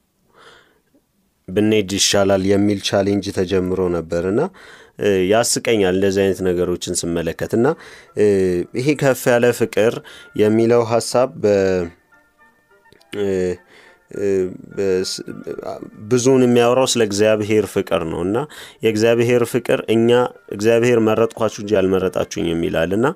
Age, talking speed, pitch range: 30-49, 75 wpm, 95-120 Hz